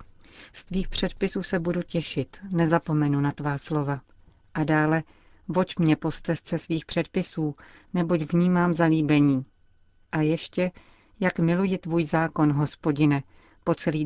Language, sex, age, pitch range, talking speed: Czech, female, 40-59, 150-170 Hz, 125 wpm